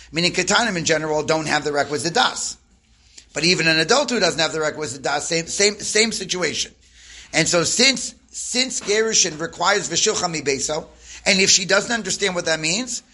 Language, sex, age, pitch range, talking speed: English, male, 40-59, 155-190 Hz, 180 wpm